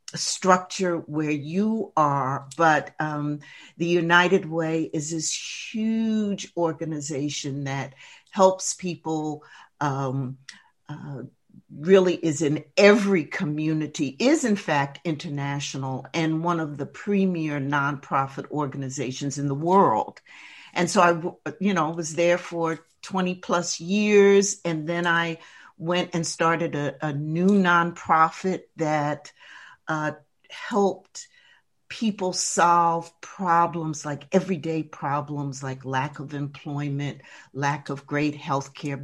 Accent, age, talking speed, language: American, 50-69, 115 wpm, English